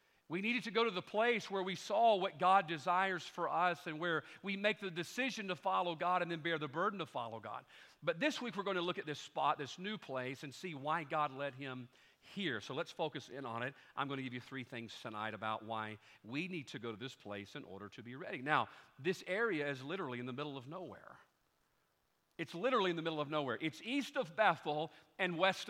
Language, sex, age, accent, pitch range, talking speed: English, male, 50-69, American, 145-200 Hz, 240 wpm